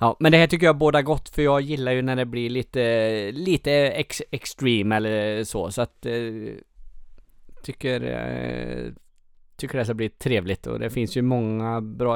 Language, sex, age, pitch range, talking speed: Swedish, male, 20-39, 105-135 Hz, 190 wpm